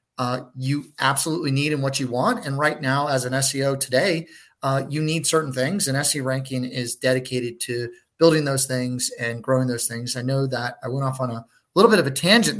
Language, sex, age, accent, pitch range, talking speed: English, male, 30-49, American, 130-150 Hz, 220 wpm